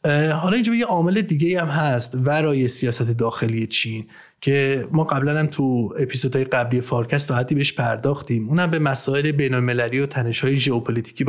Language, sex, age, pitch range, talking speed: Persian, male, 30-49, 120-145 Hz, 160 wpm